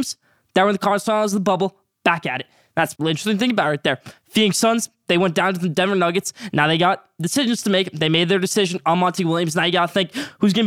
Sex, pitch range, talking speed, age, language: male, 175-220 Hz, 260 wpm, 20-39, English